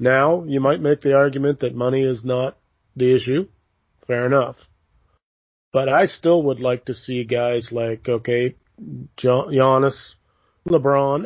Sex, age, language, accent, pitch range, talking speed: male, 40-59, English, American, 115-140 Hz, 145 wpm